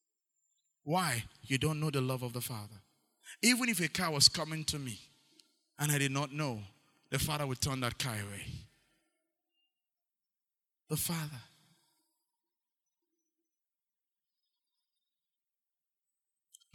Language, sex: English, male